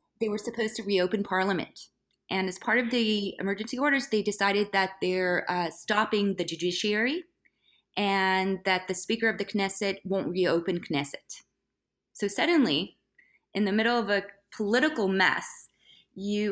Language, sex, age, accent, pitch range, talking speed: English, female, 20-39, American, 180-220 Hz, 150 wpm